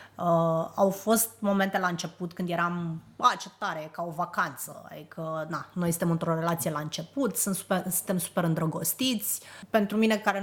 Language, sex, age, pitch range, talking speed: Romanian, female, 30-49, 170-210 Hz, 180 wpm